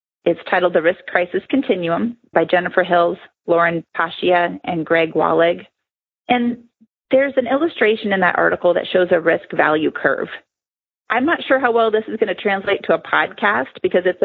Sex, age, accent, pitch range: female, 30-49, American, 180-245 Hz